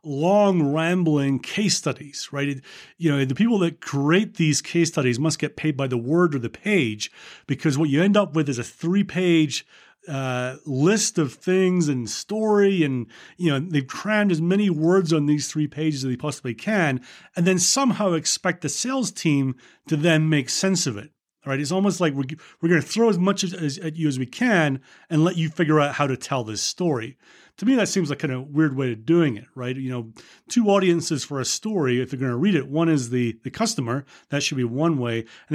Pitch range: 130-170 Hz